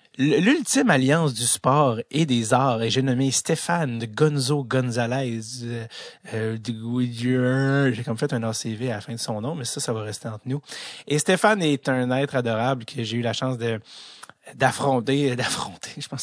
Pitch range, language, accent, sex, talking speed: 120-140 Hz, French, Canadian, male, 175 wpm